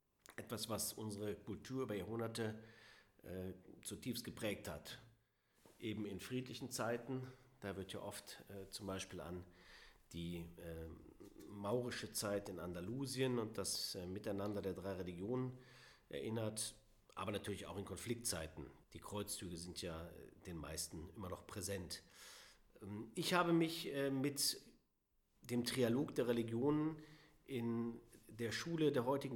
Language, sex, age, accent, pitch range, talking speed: German, male, 50-69, German, 100-125 Hz, 135 wpm